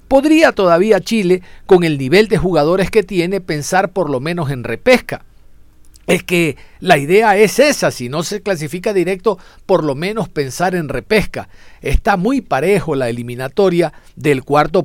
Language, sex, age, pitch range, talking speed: Spanish, male, 50-69, 145-215 Hz, 160 wpm